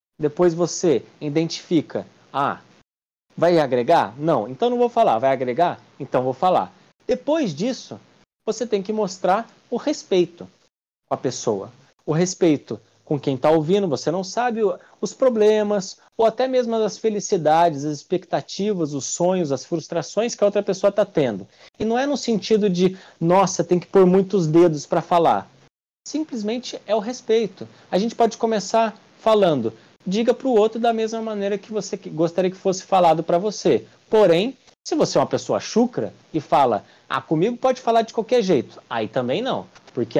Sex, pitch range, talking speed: male, 170-230 Hz, 170 wpm